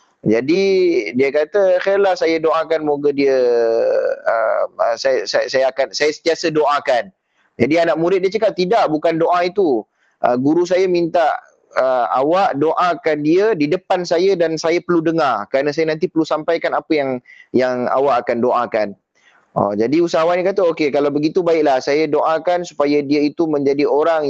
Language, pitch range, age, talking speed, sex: Malay, 140-180 Hz, 30-49, 170 wpm, male